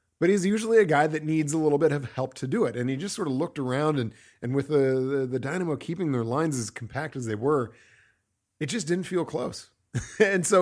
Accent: American